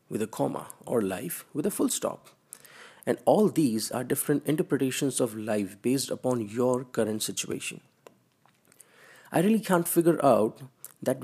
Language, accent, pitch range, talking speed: English, Indian, 120-150 Hz, 150 wpm